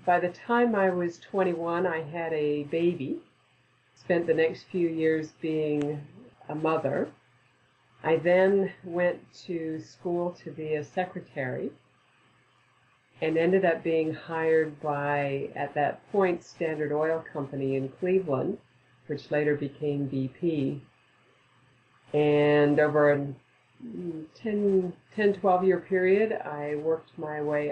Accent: American